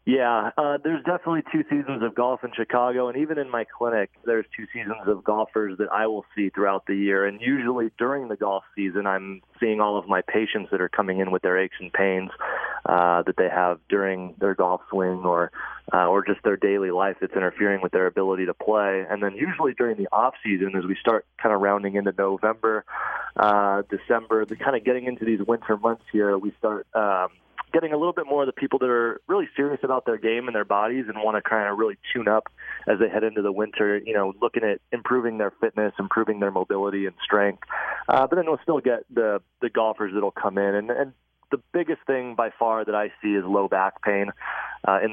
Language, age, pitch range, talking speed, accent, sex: English, 30-49, 100-120 Hz, 225 wpm, American, male